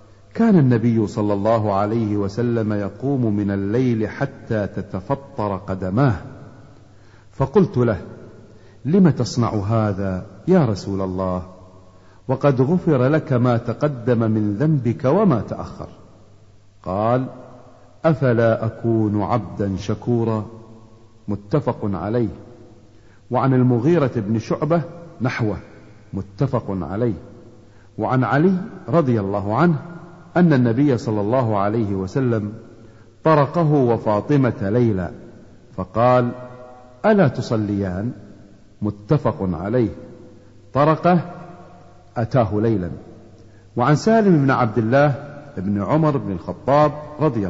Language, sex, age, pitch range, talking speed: Arabic, male, 50-69, 105-140 Hz, 95 wpm